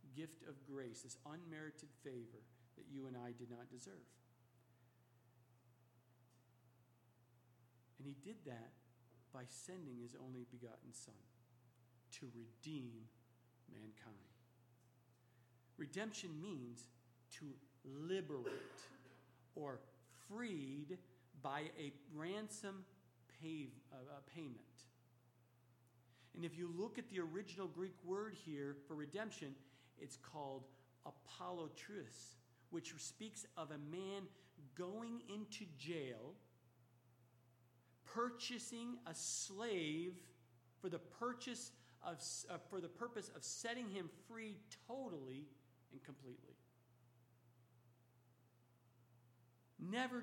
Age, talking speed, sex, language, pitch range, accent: 50-69, 95 wpm, male, English, 120-175 Hz, American